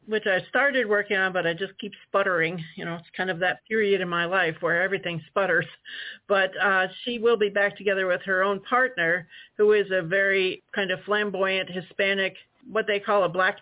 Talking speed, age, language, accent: 205 wpm, 50-69, English, American